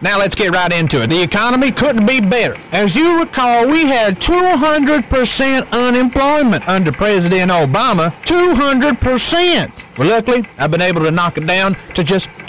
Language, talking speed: English, 160 wpm